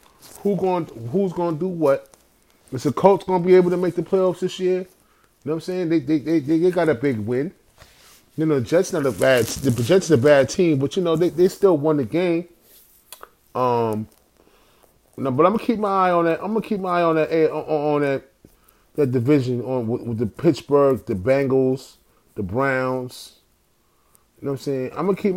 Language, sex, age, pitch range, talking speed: English, male, 30-49, 135-185 Hz, 215 wpm